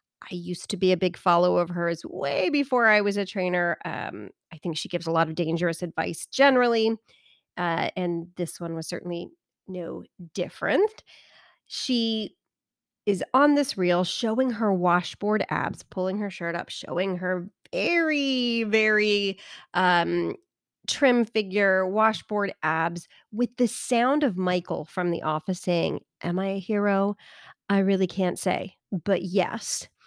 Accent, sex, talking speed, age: American, female, 150 wpm, 30-49